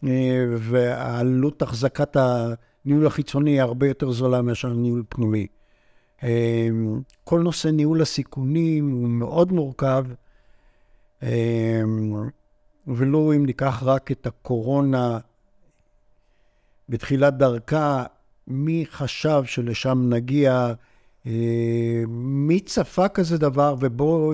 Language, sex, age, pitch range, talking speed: Hebrew, male, 60-79, 120-180 Hz, 85 wpm